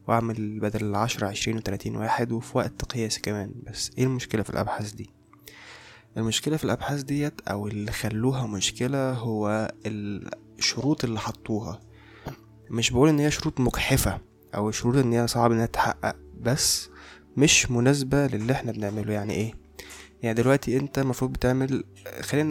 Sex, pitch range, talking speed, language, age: male, 105-130 Hz, 145 wpm, Arabic, 20-39